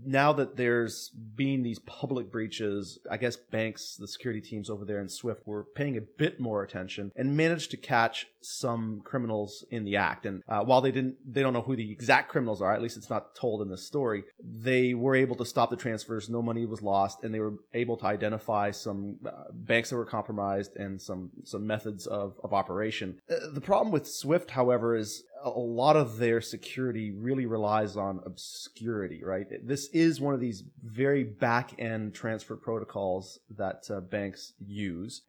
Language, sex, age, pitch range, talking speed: English, male, 30-49, 105-125 Hz, 190 wpm